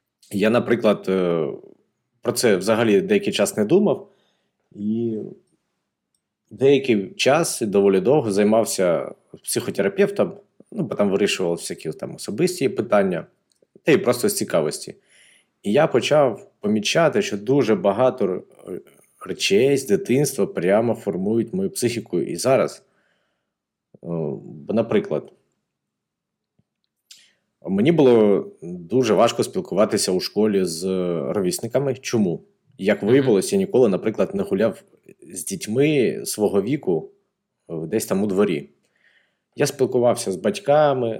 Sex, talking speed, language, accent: male, 110 wpm, Ukrainian, native